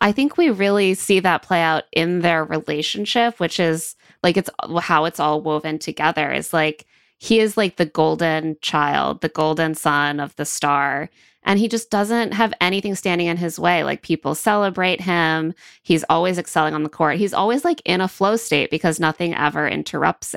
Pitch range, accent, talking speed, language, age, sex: 155-195 Hz, American, 190 wpm, English, 20-39, female